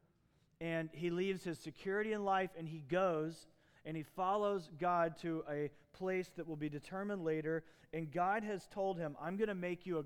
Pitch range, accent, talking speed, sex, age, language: 155-195 Hz, American, 195 wpm, male, 40-59, English